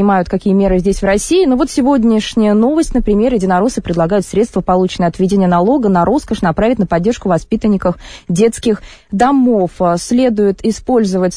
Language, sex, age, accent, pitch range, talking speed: Russian, female, 20-39, native, 185-230 Hz, 145 wpm